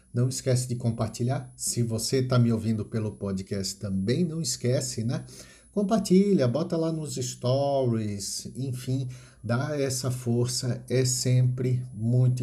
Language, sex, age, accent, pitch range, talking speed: Portuguese, male, 50-69, Brazilian, 115-140 Hz, 130 wpm